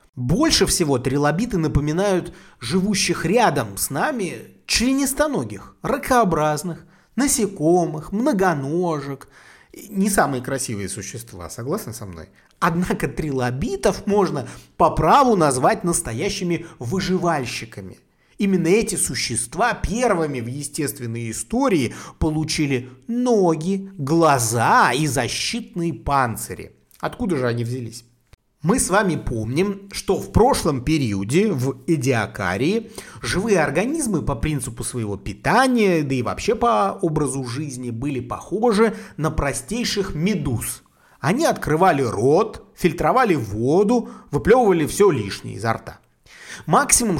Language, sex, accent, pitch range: Russian, male, native, 130-195 Hz